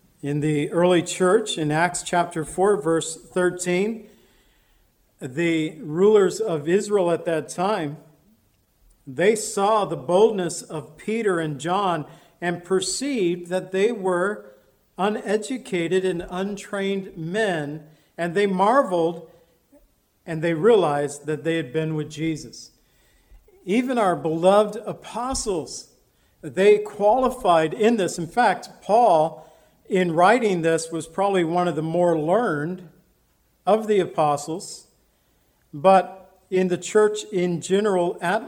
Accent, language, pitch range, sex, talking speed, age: American, English, 165-205 Hz, male, 120 wpm, 50-69